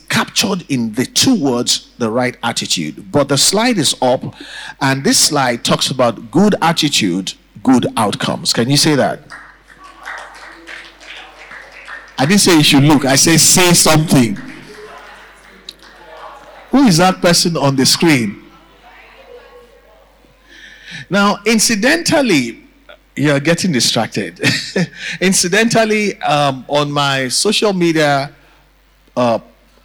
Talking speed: 110 wpm